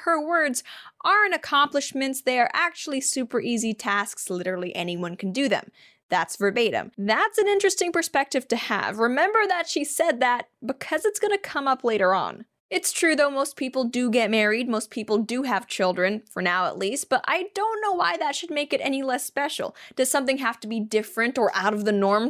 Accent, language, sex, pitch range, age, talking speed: American, English, female, 220-310 Hz, 20-39, 205 wpm